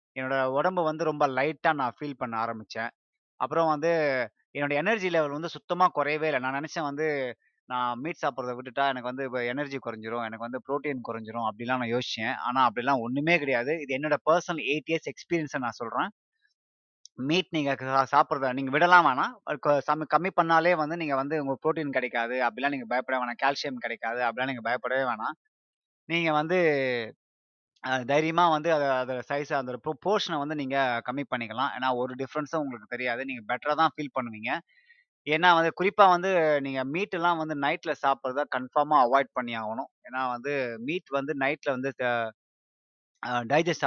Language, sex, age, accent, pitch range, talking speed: Tamil, male, 20-39, native, 125-155 Hz, 160 wpm